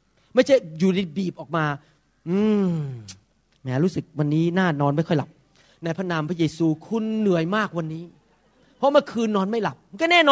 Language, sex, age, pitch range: Thai, male, 30-49, 170-230 Hz